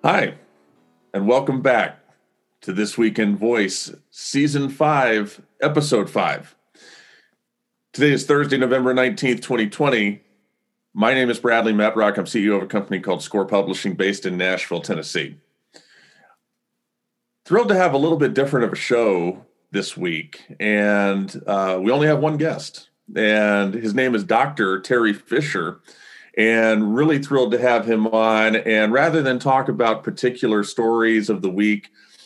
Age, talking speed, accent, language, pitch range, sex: 40-59, 145 wpm, American, English, 105-130 Hz, male